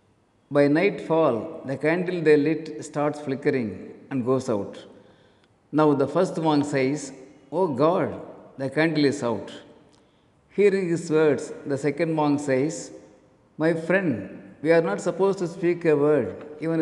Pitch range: 130-160 Hz